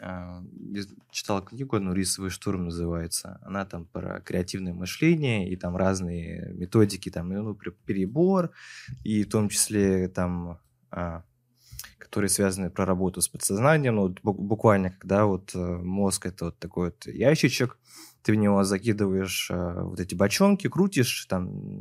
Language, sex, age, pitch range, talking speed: Russian, male, 20-39, 95-115 Hz, 140 wpm